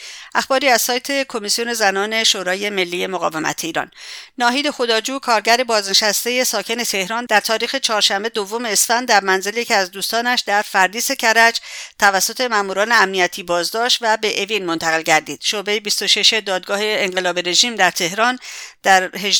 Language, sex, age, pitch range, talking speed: English, female, 50-69, 185-230 Hz, 145 wpm